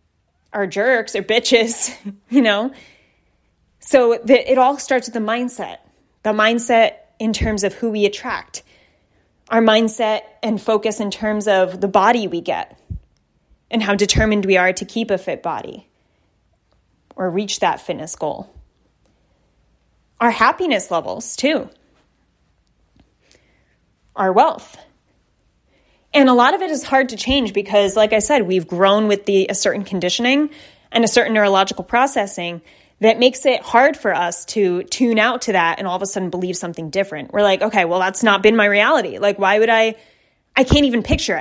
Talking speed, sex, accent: 165 wpm, female, American